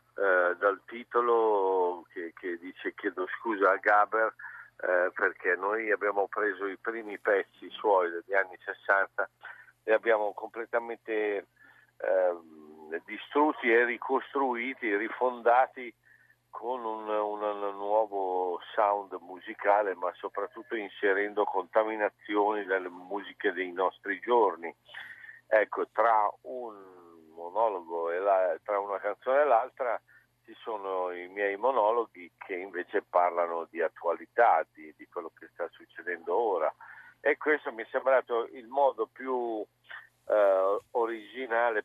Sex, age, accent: male, 50-69, native